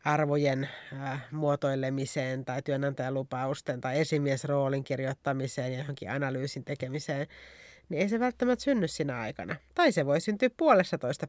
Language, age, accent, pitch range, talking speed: Finnish, 30-49, native, 140-175 Hz, 135 wpm